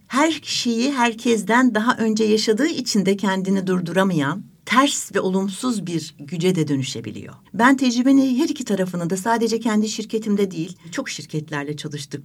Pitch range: 160-210 Hz